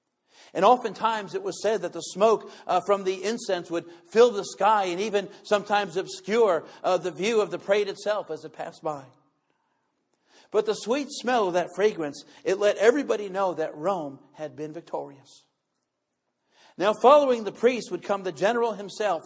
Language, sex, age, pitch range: English, male, 50-69, 165-210 Hz